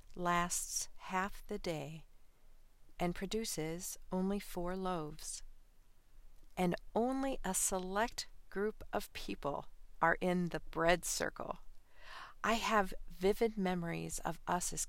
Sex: female